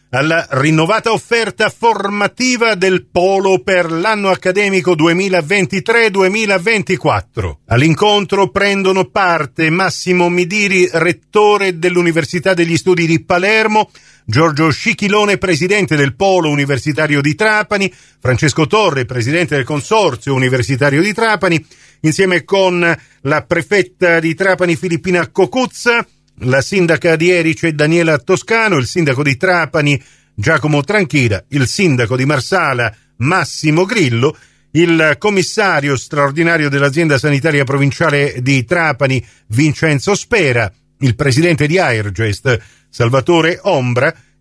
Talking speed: 105 wpm